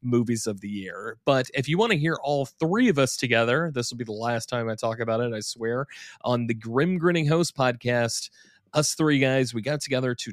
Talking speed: 230 wpm